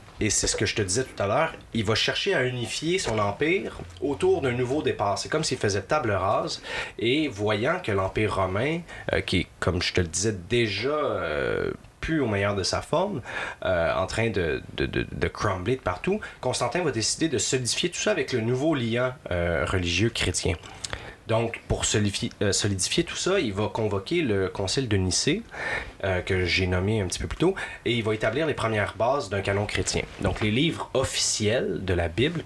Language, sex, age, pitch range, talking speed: French, male, 30-49, 95-130 Hz, 205 wpm